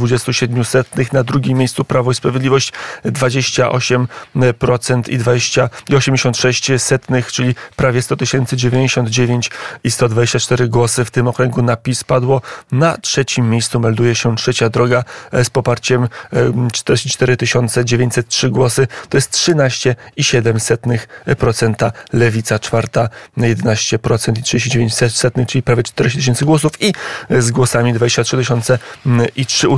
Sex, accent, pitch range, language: male, native, 120-135 Hz, Polish